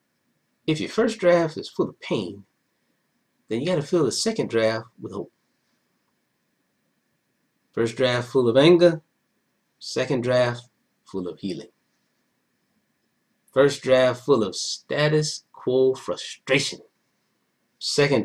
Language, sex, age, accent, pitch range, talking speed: English, male, 30-49, American, 105-145 Hz, 115 wpm